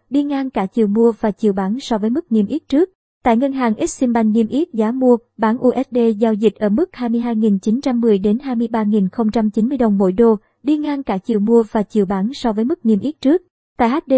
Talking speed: 250 wpm